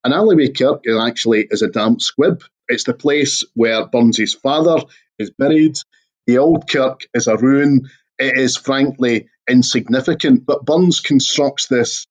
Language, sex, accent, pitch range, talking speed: English, male, British, 115-145 Hz, 150 wpm